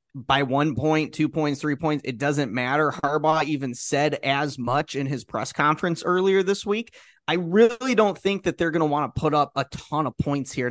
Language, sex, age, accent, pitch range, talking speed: English, male, 30-49, American, 135-165 Hz, 220 wpm